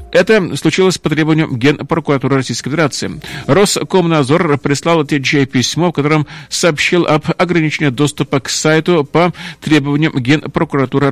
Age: 40-59